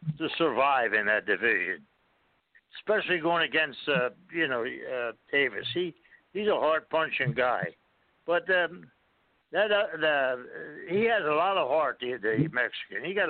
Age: 60-79